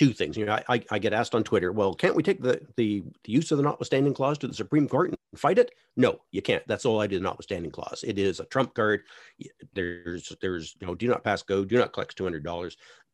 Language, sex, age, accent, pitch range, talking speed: English, male, 50-69, American, 95-120 Hz, 260 wpm